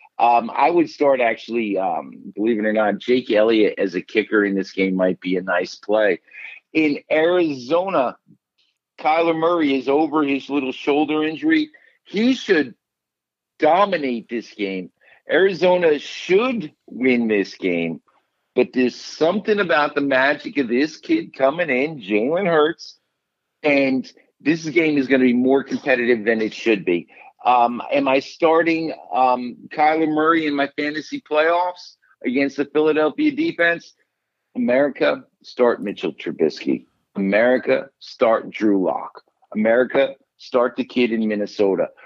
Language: English